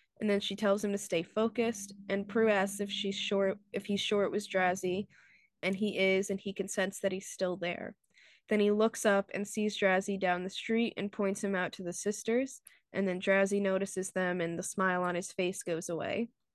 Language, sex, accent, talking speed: English, female, American, 220 wpm